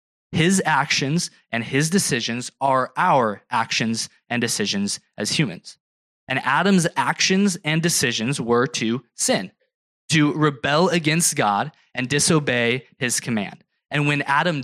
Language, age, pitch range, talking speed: English, 20-39, 120-165 Hz, 125 wpm